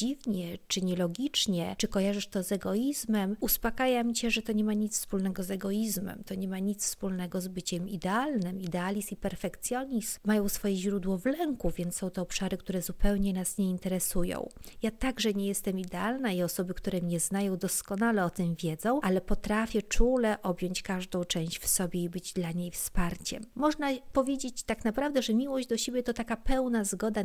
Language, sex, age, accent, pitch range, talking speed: Polish, female, 40-59, native, 190-230 Hz, 185 wpm